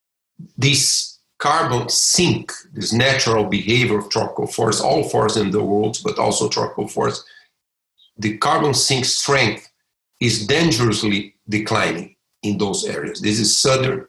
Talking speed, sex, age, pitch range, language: 130 wpm, male, 50-69, 110-145 Hz, English